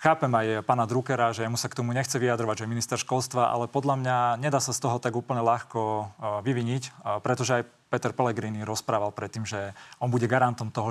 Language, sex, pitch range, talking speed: Slovak, male, 115-130 Hz, 205 wpm